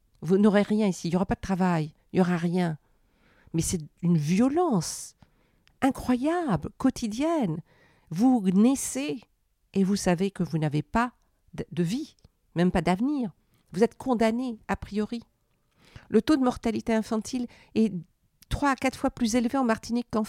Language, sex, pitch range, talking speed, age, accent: French, female, 165-230 Hz, 160 wpm, 50-69, French